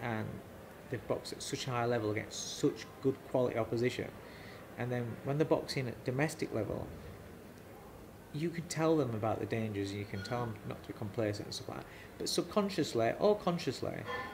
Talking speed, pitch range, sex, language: 185 wpm, 105-135 Hz, male, English